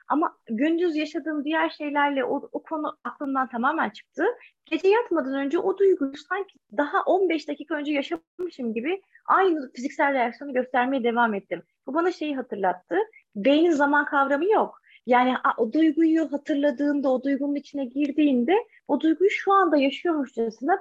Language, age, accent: Turkish, 30-49, native